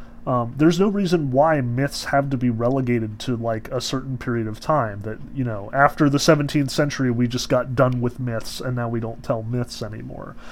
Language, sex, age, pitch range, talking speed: English, male, 30-49, 120-155 Hz, 210 wpm